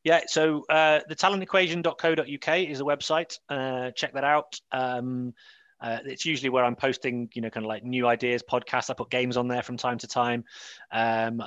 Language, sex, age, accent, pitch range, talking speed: English, male, 30-49, British, 115-140 Hz, 195 wpm